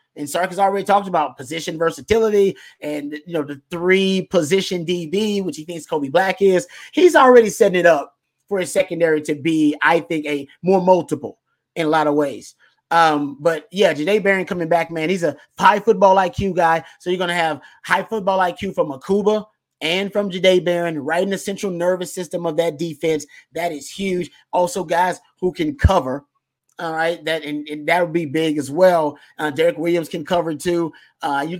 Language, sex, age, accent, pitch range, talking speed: English, male, 30-49, American, 155-195 Hz, 200 wpm